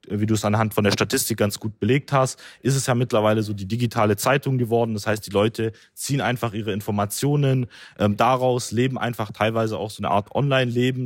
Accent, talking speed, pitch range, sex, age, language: German, 205 wpm, 105-125 Hz, male, 20-39, German